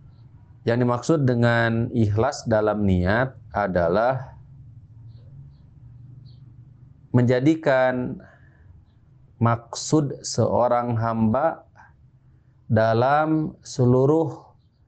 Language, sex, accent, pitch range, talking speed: Indonesian, male, native, 110-135 Hz, 50 wpm